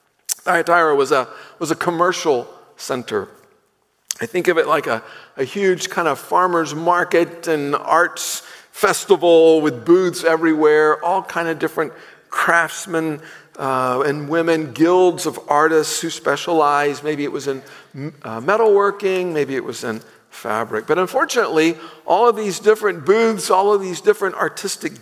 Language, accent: English, American